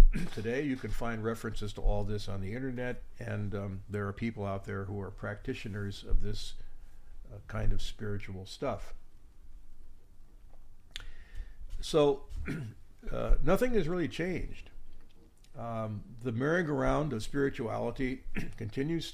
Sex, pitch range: male, 95-125 Hz